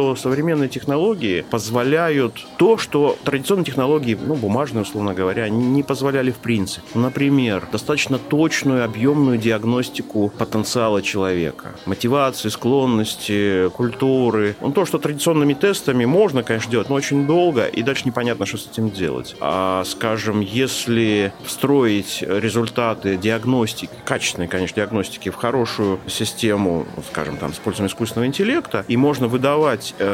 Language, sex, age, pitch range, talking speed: Russian, male, 30-49, 110-140 Hz, 130 wpm